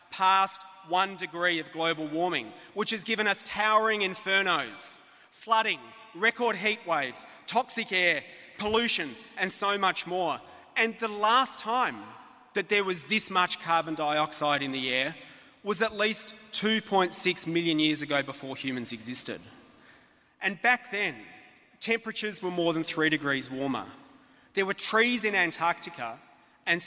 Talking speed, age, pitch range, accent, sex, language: 140 wpm, 30-49, 150-210 Hz, Australian, male, English